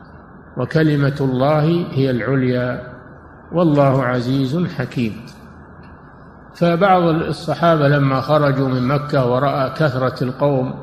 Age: 50-69